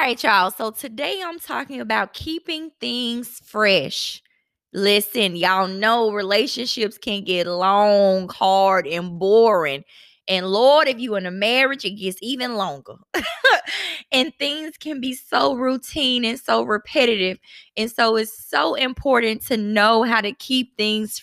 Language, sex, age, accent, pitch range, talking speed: English, female, 20-39, American, 195-265 Hz, 145 wpm